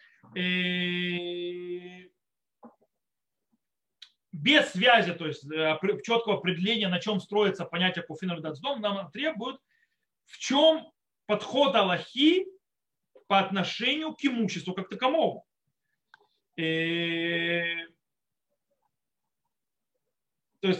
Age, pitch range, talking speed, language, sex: 40-59, 175-240 Hz, 75 wpm, Russian, male